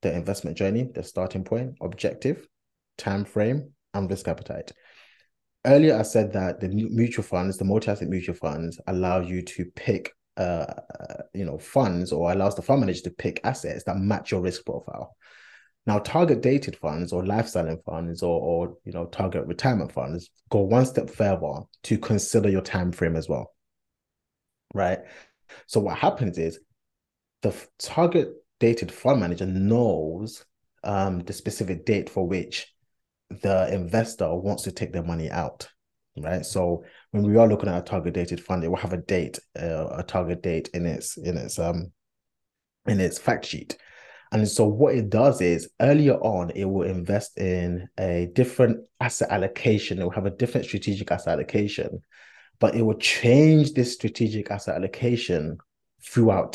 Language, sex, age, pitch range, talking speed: English, male, 20-39, 90-110 Hz, 165 wpm